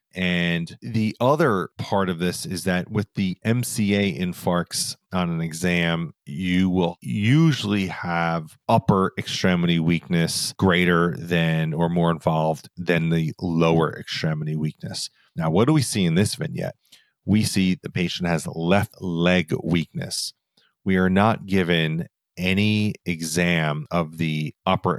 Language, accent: English, American